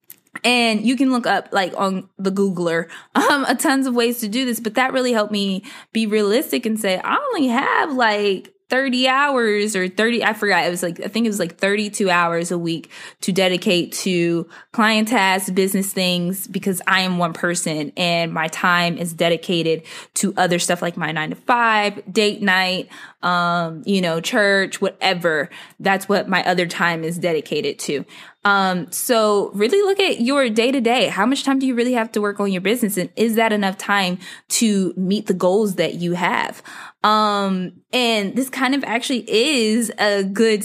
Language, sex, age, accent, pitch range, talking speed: English, female, 20-39, American, 180-235 Hz, 190 wpm